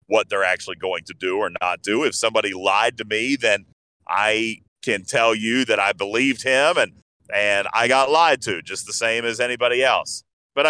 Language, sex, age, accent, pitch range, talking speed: English, male, 40-59, American, 105-160 Hz, 200 wpm